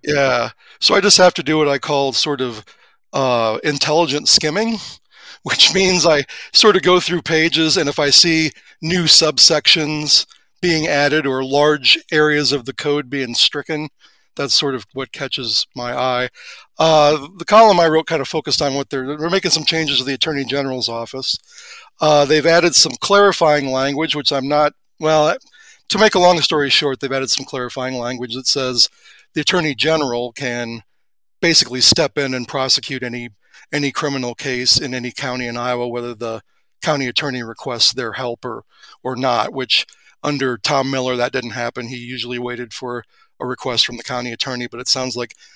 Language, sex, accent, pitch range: English, male, American, 125-155 Hz